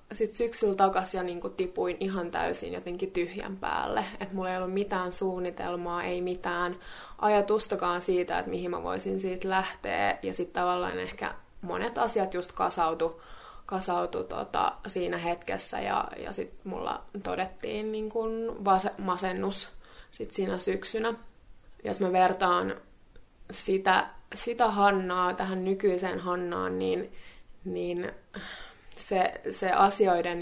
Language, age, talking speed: Finnish, 20-39, 110 wpm